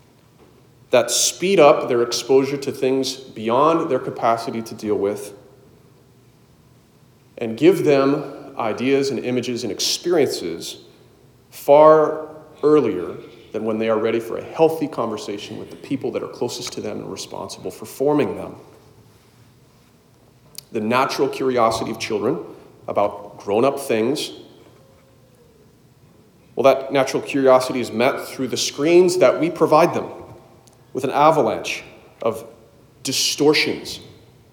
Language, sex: English, male